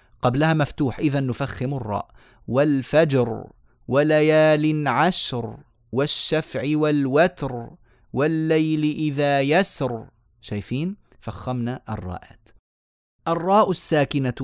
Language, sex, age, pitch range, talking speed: Arabic, male, 30-49, 115-155 Hz, 75 wpm